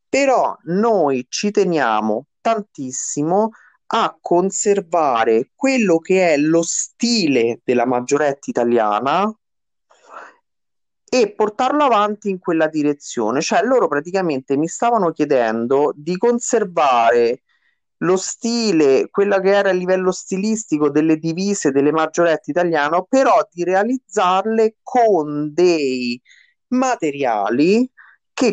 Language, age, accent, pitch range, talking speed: Italian, 30-49, native, 135-205 Hz, 105 wpm